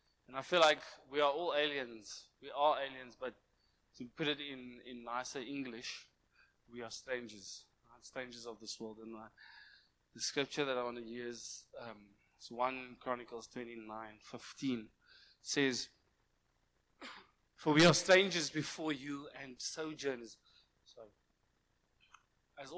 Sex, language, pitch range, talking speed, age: male, English, 115-135 Hz, 130 wpm, 20-39